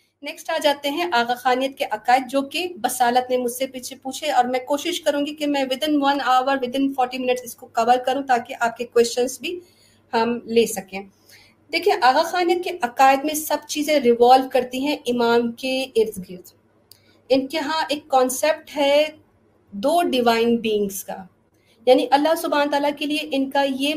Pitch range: 245-295 Hz